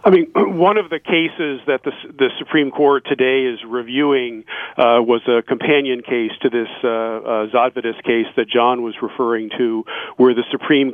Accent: American